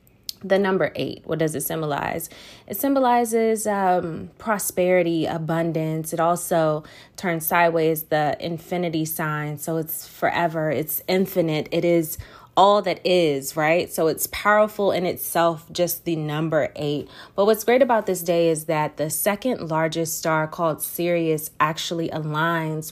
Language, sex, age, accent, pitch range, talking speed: English, female, 20-39, American, 160-195 Hz, 145 wpm